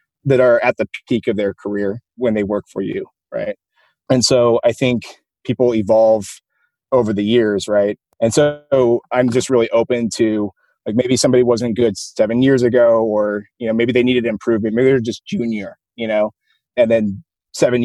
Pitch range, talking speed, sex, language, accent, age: 110-125 Hz, 185 wpm, male, English, American, 30-49